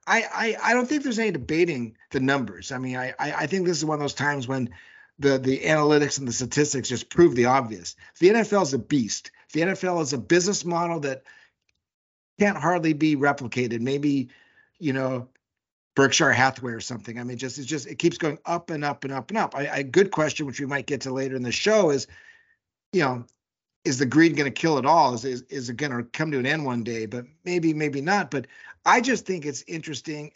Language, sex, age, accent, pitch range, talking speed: English, male, 50-69, American, 130-185 Hz, 235 wpm